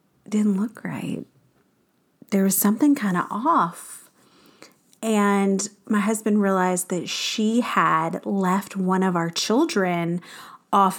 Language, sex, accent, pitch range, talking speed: English, female, American, 185-215 Hz, 120 wpm